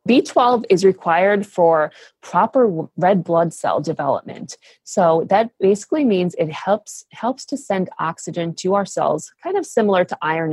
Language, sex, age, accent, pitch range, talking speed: English, female, 30-49, American, 155-205 Hz, 160 wpm